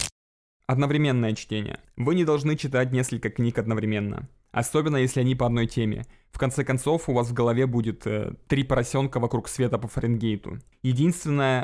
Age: 20-39